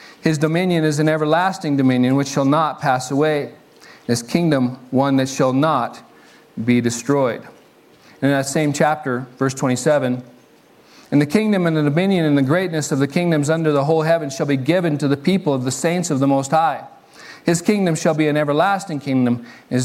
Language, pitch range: English, 140-180 Hz